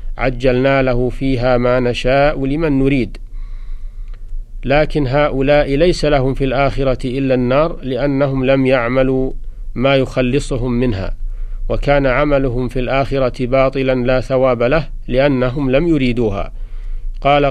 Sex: male